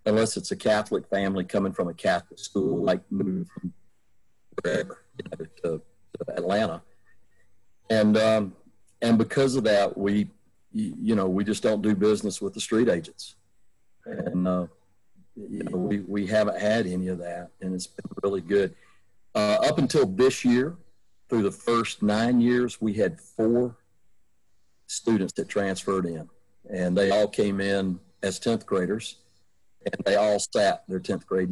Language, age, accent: English, 50-69, American